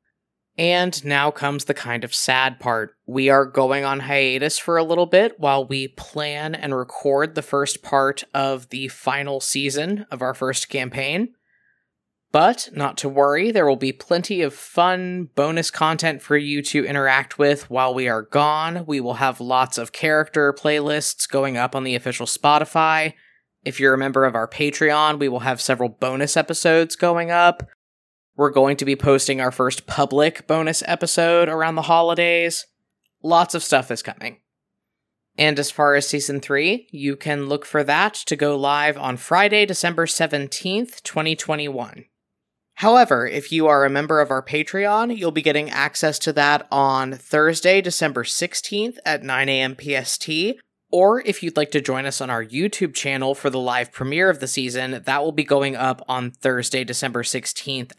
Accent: American